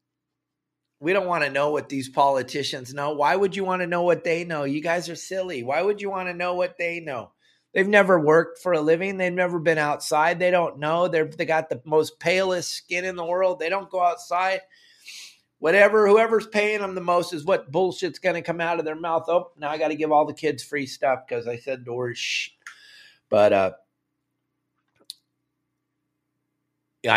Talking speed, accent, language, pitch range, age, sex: 205 wpm, American, English, 125-175 Hz, 30-49, male